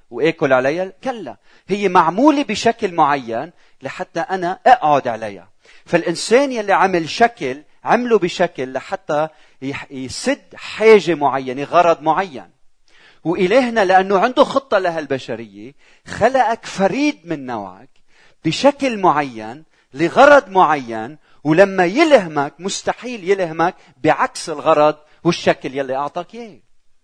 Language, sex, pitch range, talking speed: Arabic, male, 140-200 Hz, 105 wpm